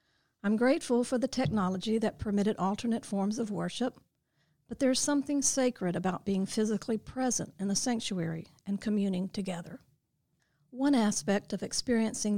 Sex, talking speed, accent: female, 140 wpm, American